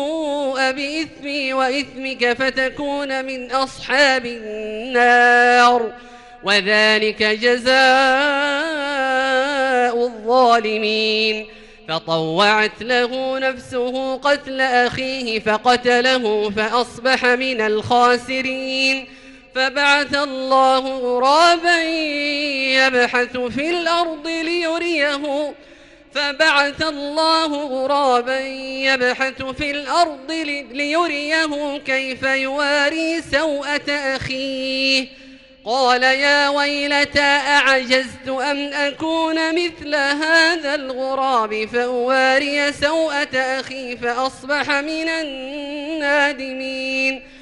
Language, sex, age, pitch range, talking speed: Arabic, male, 30-49, 250-285 Hz, 65 wpm